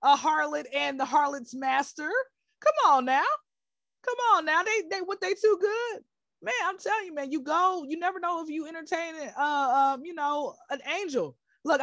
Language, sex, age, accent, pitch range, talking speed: English, female, 20-39, American, 225-335 Hz, 195 wpm